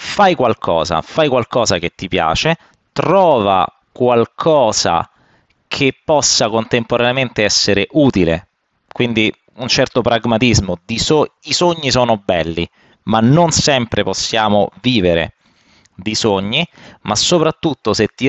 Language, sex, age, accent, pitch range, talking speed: Italian, male, 30-49, native, 115-155 Hz, 115 wpm